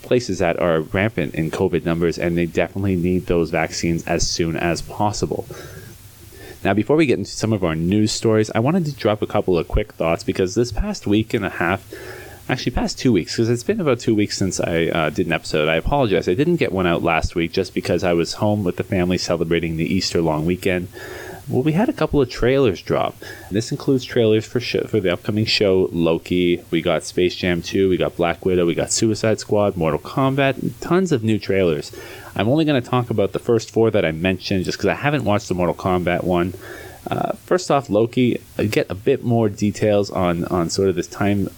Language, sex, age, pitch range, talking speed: English, male, 30-49, 90-115 Hz, 225 wpm